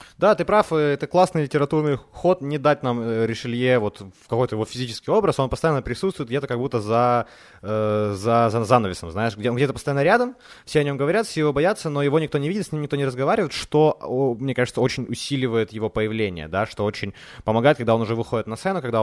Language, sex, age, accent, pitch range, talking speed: Ukrainian, male, 20-39, native, 110-150 Hz, 220 wpm